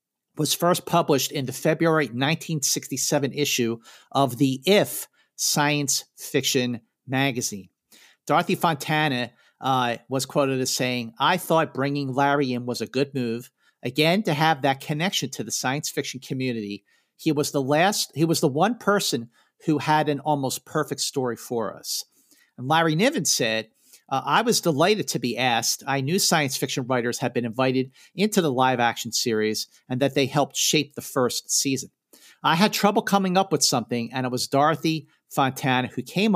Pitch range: 125-155 Hz